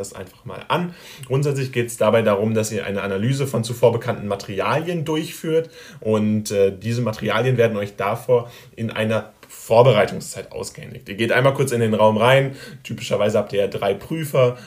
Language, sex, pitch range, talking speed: German, male, 100-125 Hz, 170 wpm